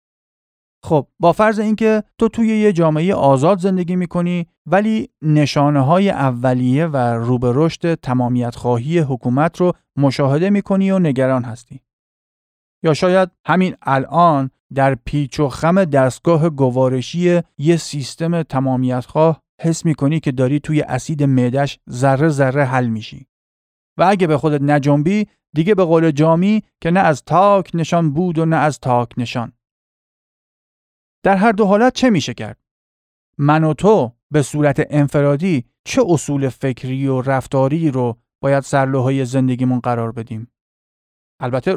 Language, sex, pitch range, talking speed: Persian, male, 130-165 Hz, 145 wpm